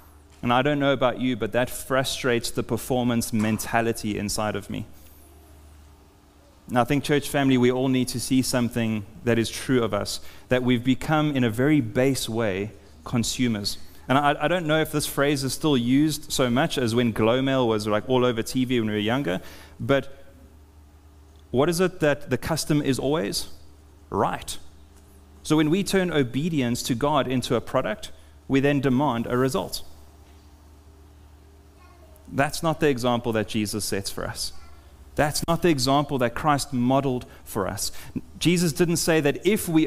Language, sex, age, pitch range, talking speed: English, male, 30-49, 105-150 Hz, 170 wpm